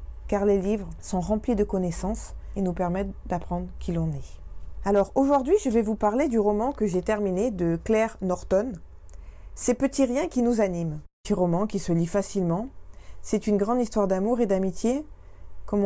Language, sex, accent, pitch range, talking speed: French, female, French, 170-230 Hz, 185 wpm